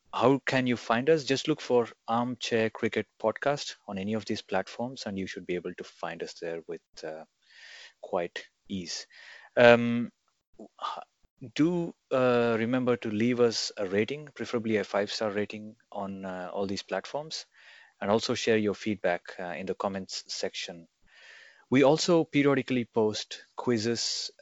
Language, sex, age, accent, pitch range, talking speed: English, male, 30-49, Indian, 100-125 Hz, 155 wpm